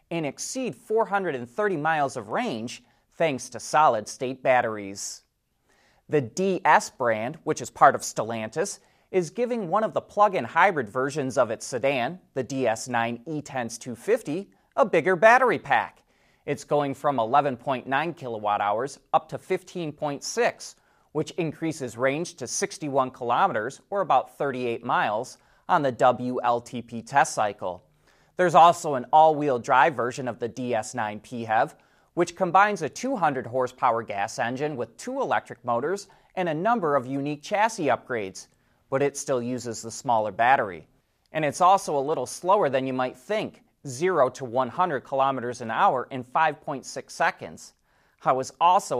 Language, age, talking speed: English, 30-49, 140 wpm